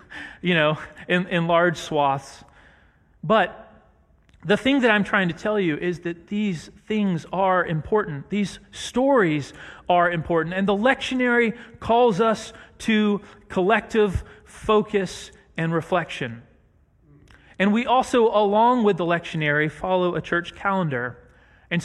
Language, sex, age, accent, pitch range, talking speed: English, male, 30-49, American, 170-205 Hz, 130 wpm